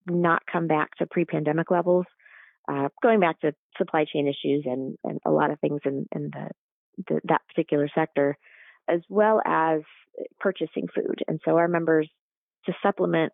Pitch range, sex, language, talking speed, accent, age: 145-175 Hz, female, English, 165 wpm, American, 30-49